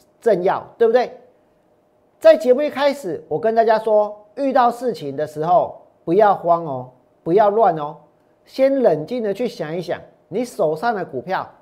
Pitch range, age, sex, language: 180-255 Hz, 40-59, male, Chinese